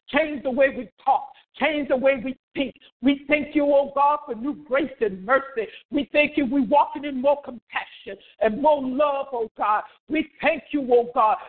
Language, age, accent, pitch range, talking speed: English, 60-79, American, 235-320 Hz, 200 wpm